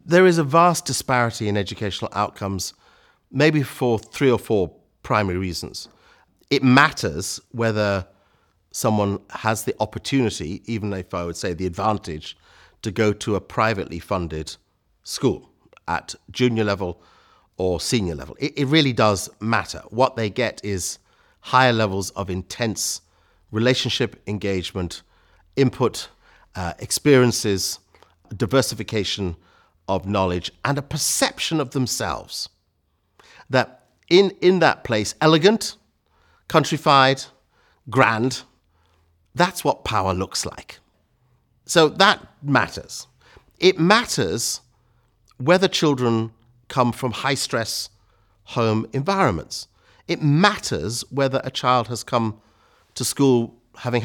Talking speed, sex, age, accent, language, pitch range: 115 wpm, male, 50-69, British, English, 95-135 Hz